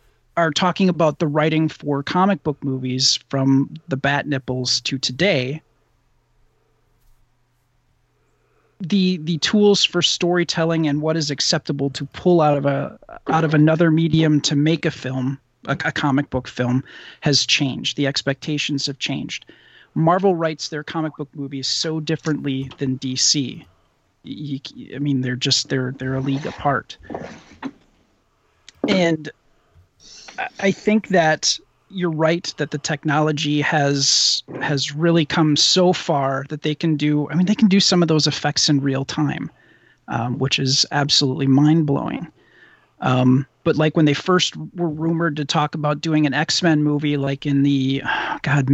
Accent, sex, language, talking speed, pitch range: American, male, English, 150 wpm, 135-160 Hz